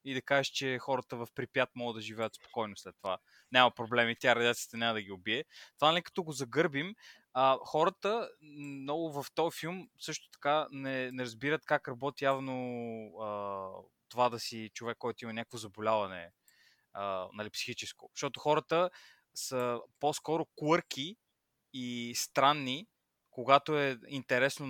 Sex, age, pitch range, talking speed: male, 20-39, 120-145 Hz, 145 wpm